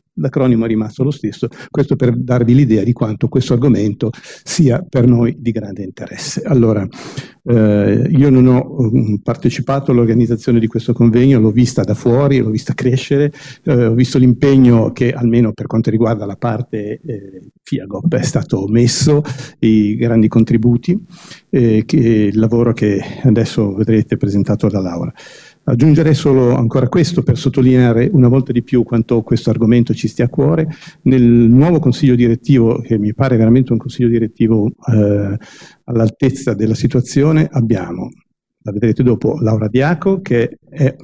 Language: Italian